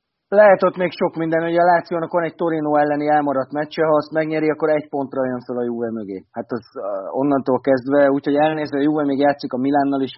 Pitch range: 135-165 Hz